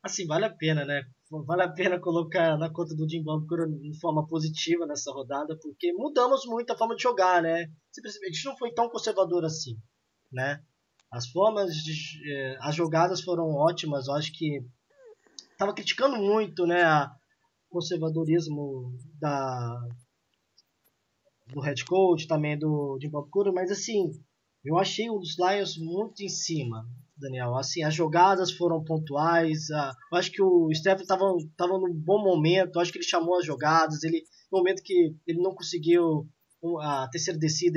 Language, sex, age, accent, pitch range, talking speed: Portuguese, male, 20-39, Brazilian, 150-185 Hz, 165 wpm